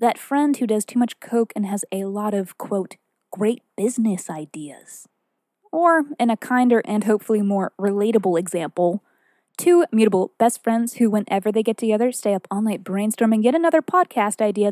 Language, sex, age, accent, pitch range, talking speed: English, female, 20-39, American, 200-260 Hz, 180 wpm